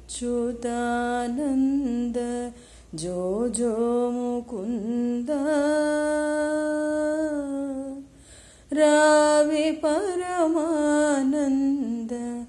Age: 30-49